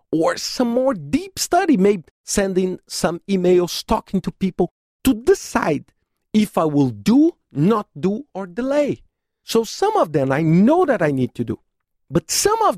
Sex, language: male, English